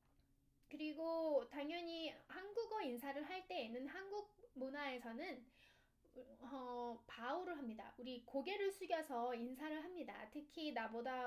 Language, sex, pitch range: Korean, female, 250-335 Hz